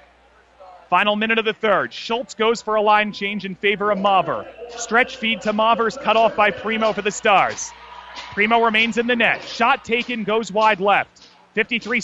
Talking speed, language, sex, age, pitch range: 185 wpm, English, male, 30-49, 215-245 Hz